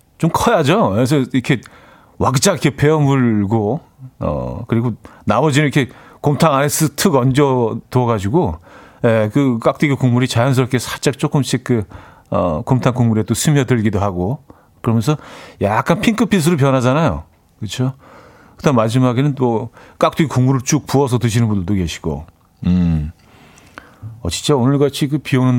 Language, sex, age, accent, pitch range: Korean, male, 40-59, native, 110-145 Hz